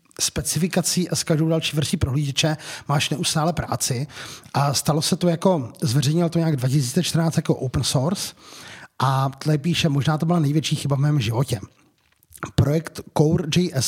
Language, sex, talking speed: Czech, male, 150 wpm